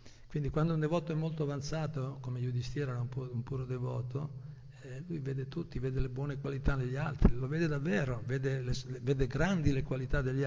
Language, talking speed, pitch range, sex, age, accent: Italian, 185 wpm, 125-145 Hz, male, 60-79, native